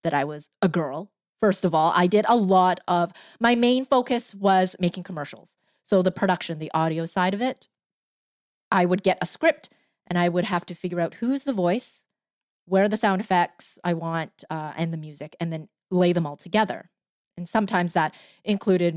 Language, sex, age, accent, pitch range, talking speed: English, female, 20-39, American, 170-210 Hz, 195 wpm